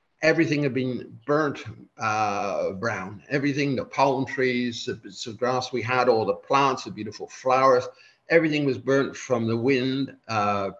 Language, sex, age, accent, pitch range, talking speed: English, male, 50-69, British, 115-145 Hz, 160 wpm